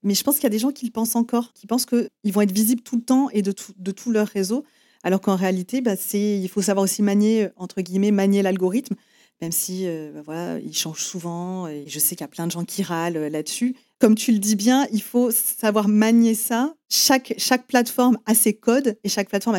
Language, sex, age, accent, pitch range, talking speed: French, female, 30-49, French, 185-235 Hz, 245 wpm